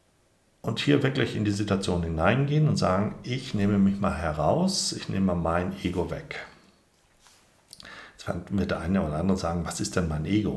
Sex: male